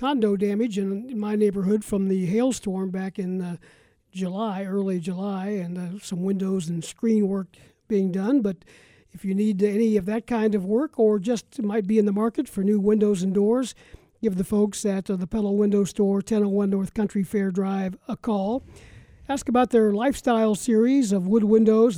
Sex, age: male, 50-69